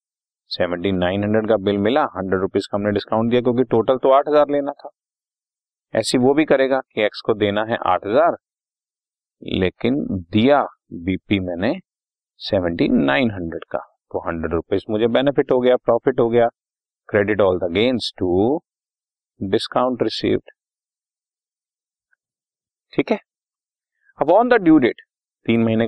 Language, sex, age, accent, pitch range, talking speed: Hindi, male, 40-59, native, 100-125 Hz, 90 wpm